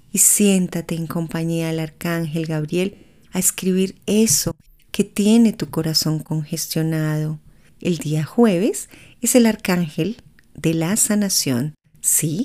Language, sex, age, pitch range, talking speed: Spanish, female, 30-49, 155-190 Hz, 120 wpm